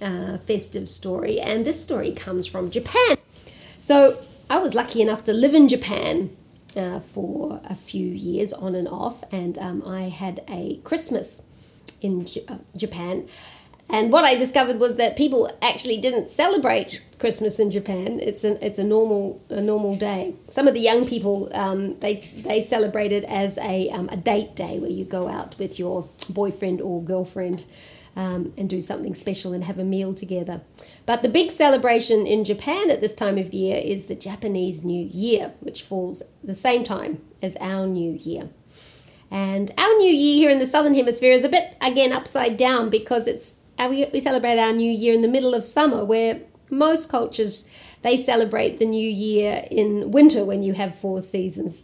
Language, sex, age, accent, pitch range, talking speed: English, female, 40-59, Australian, 190-245 Hz, 185 wpm